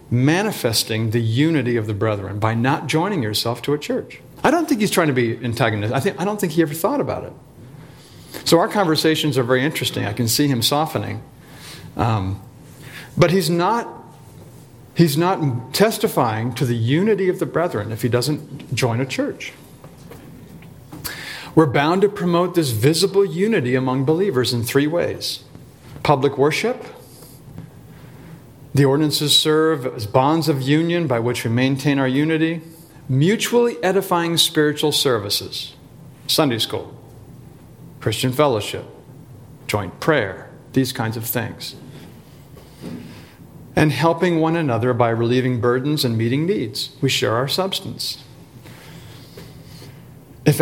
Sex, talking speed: male, 140 wpm